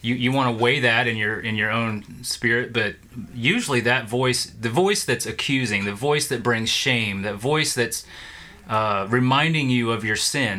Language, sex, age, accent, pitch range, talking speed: English, male, 30-49, American, 115-135 Hz, 195 wpm